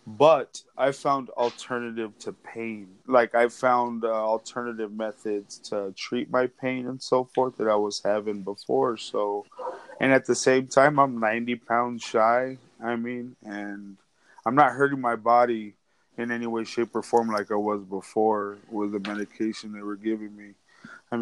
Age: 20-39